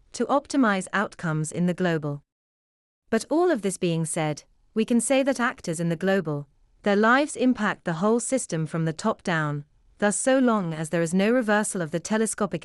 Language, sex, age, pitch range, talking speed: English, female, 40-59, 160-225 Hz, 195 wpm